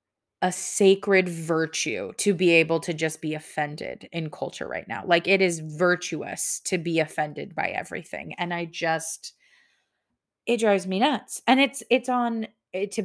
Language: English